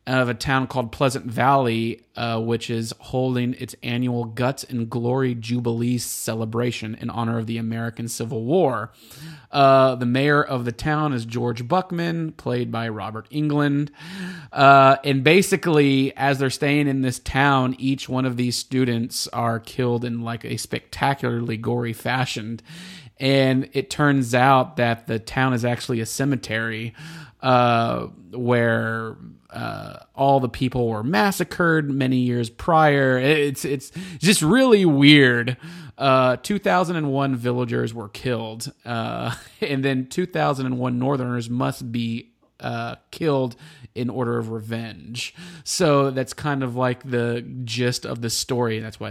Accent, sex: American, male